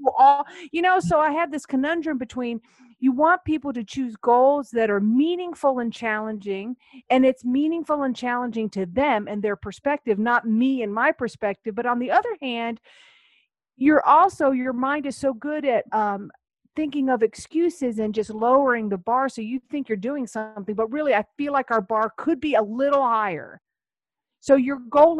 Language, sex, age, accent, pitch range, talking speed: English, female, 50-69, American, 215-275 Hz, 185 wpm